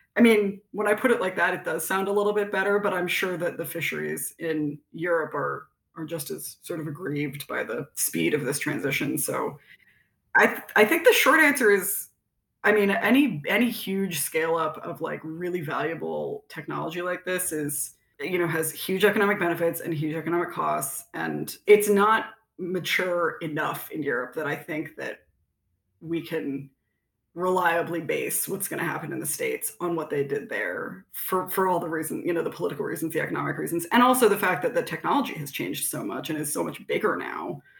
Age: 20-39